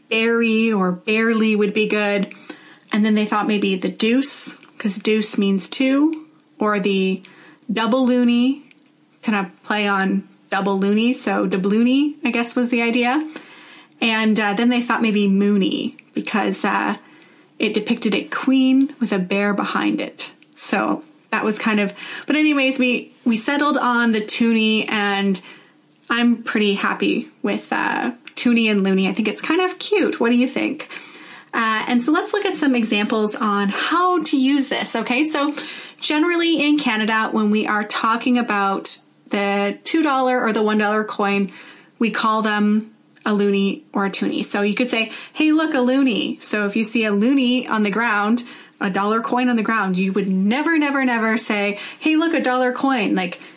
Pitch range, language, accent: 210-265 Hz, English, American